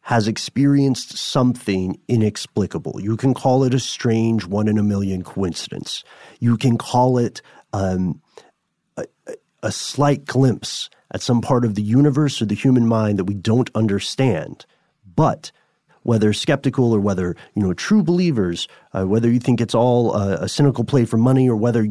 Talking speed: 160 wpm